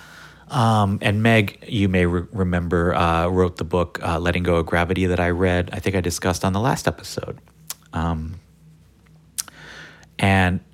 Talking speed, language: 160 wpm, English